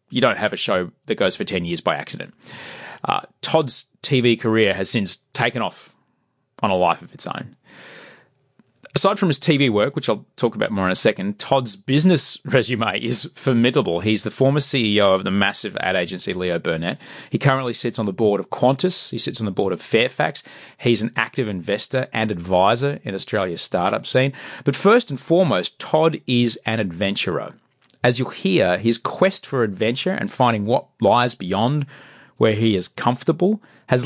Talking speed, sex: 185 wpm, male